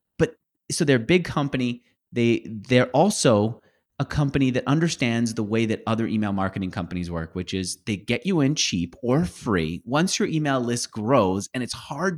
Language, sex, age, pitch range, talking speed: English, male, 30-49, 110-150 Hz, 180 wpm